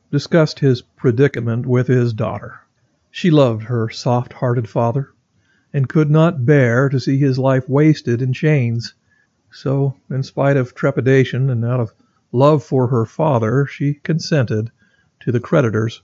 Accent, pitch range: American, 120-150 Hz